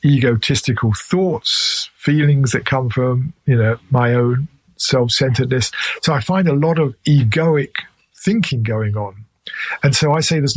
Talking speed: 150 wpm